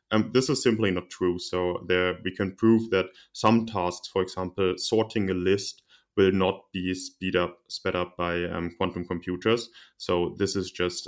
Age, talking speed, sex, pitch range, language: 20-39, 185 wpm, male, 90-110 Hz, English